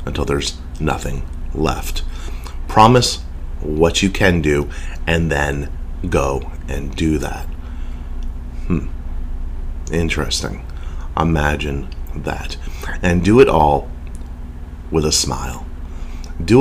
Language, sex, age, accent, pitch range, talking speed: English, male, 30-49, American, 70-80 Hz, 100 wpm